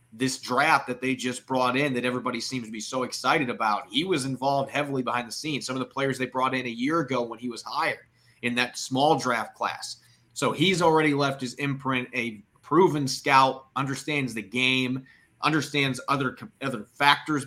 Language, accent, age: English, American, 30-49